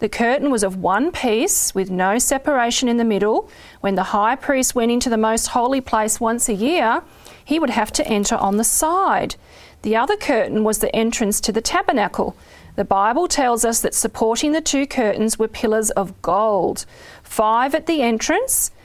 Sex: female